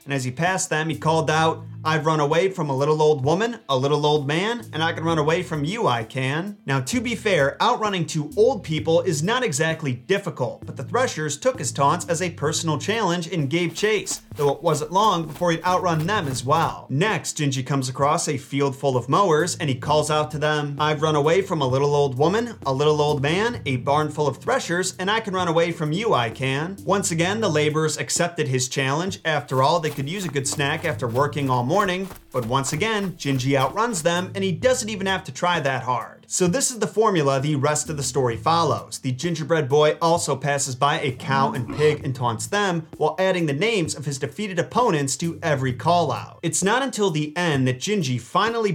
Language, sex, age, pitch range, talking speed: English, male, 30-49, 140-175 Hz, 225 wpm